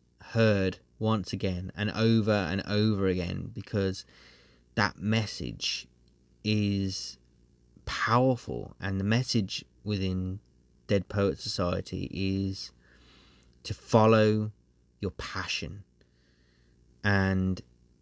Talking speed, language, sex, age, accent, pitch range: 85 wpm, English, male, 30-49, British, 65-105 Hz